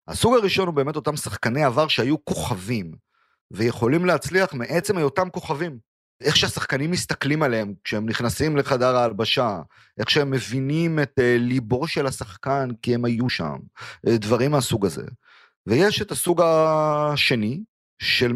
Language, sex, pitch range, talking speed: Hebrew, male, 115-160 Hz, 135 wpm